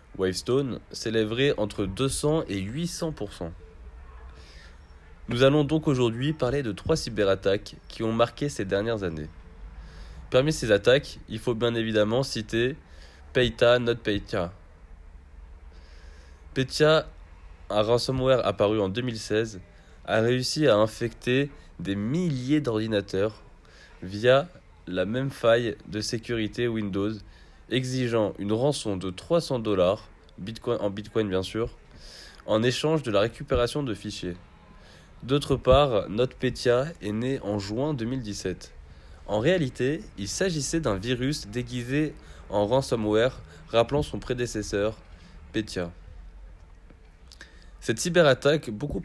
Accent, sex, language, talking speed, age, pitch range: French, male, French, 115 wpm, 20-39, 90-125 Hz